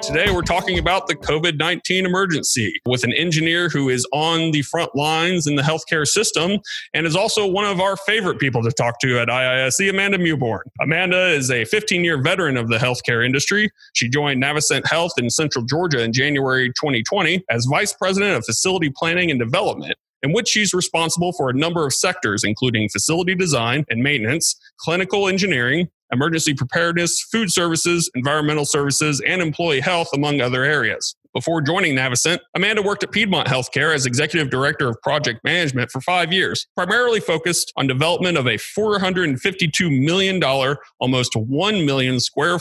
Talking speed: 170 wpm